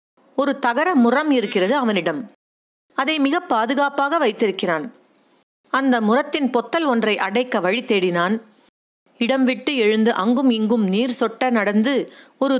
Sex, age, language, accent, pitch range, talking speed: female, 50-69, Tamil, native, 215-275 Hz, 120 wpm